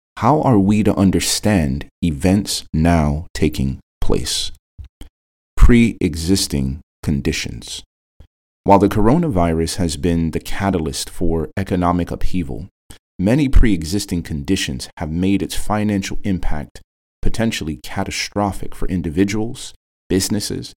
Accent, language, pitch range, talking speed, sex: American, English, 75-100 Hz, 100 wpm, male